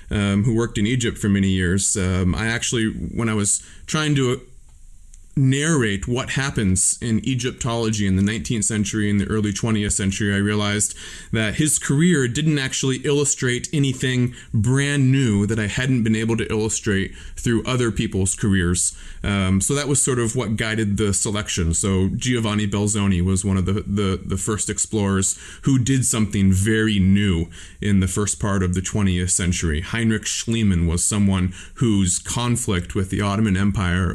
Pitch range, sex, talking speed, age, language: 95-115 Hz, male, 165 wpm, 20-39, English